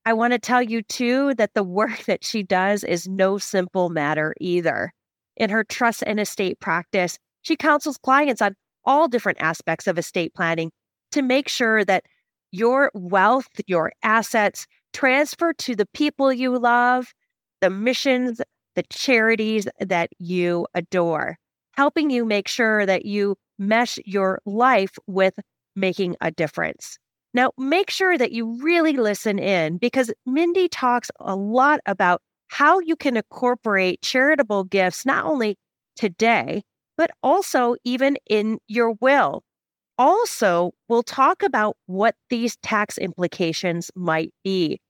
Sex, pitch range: female, 190-260 Hz